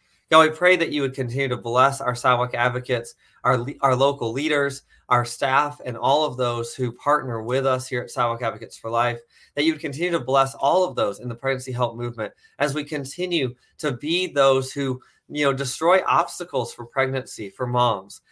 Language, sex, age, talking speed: English, male, 30-49, 200 wpm